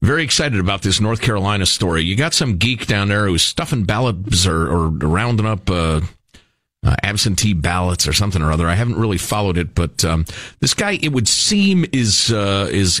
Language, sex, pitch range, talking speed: English, male, 95-130 Hz, 200 wpm